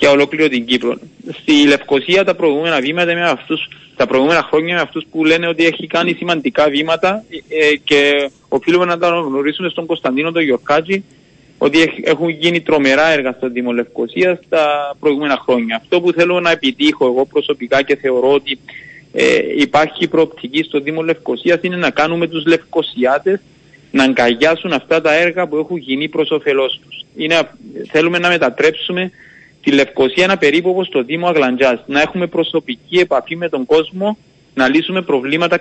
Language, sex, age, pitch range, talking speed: Greek, male, 30-49, 135-170 Hz, 160 wpm